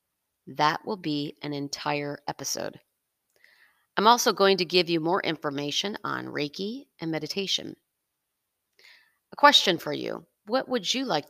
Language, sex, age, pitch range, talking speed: English, female, 40-59, 150-200 Hz, 140 wpm